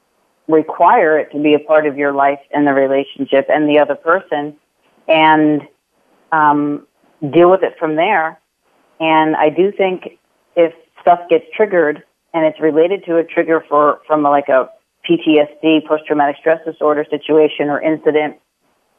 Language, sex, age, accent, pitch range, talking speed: English, female, 40-59, American, 150-165 Hz, 150 wpm